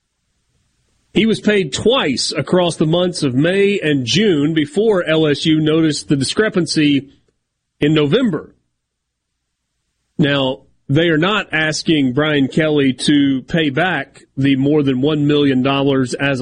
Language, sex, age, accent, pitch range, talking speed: English, male, 40-59, American, 125-160 Hz, 125 wpm